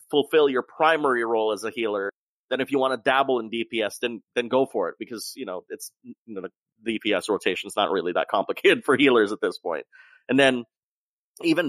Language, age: English, 30-49